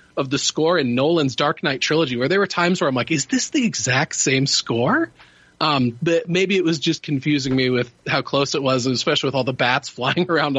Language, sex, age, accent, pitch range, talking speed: English, male, 30-49, American, 140-175 Hz, 230 wpm